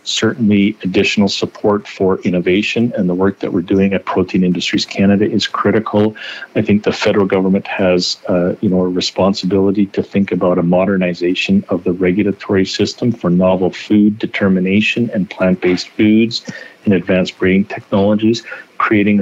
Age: 50-69